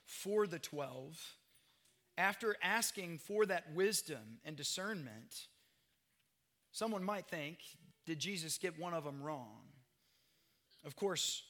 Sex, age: male, 30-49